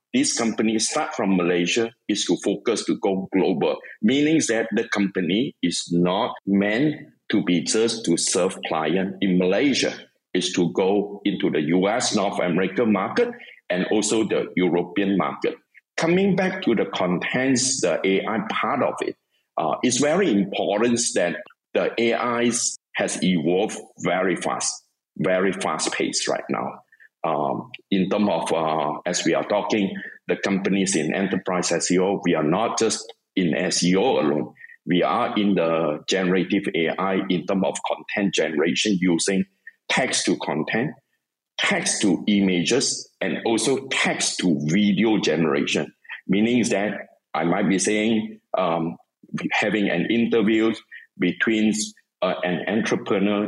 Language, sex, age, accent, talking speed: English, male, 50-69, Malaysian, 130 wpm